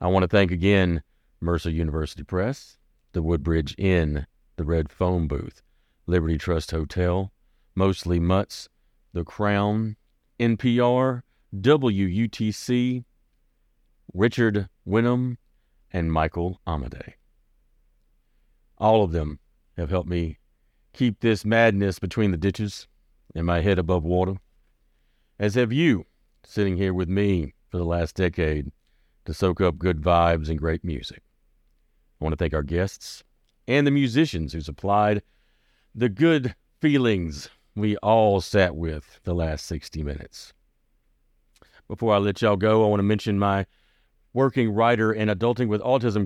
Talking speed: 130 wpm